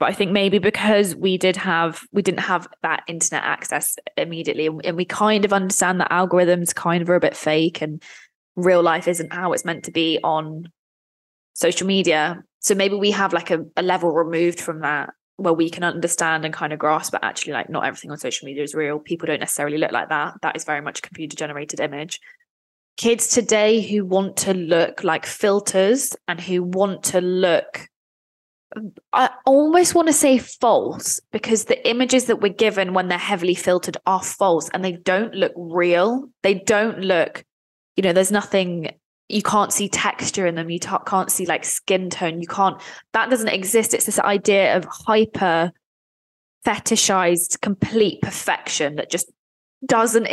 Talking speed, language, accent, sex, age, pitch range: 180 wpm, English, British, female, 20-39, 170-205 Hz